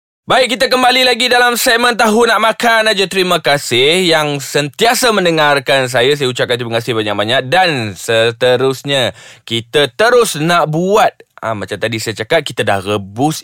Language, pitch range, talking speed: Malay, 130-180 Hz, 155 wpm